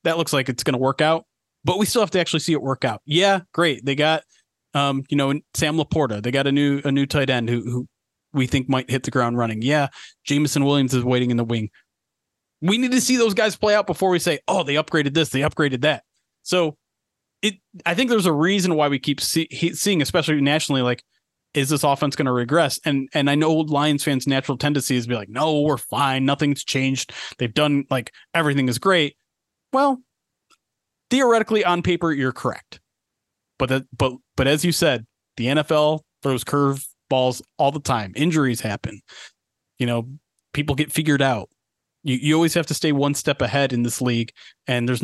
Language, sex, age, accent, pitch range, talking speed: English, male, 30-49, American, 130-160 Hz, 210 wpm